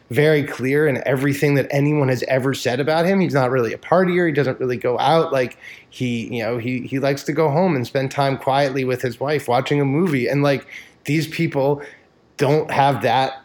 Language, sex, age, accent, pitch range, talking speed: English, male, 20-39, American, 120-155 Hz, 215 wpm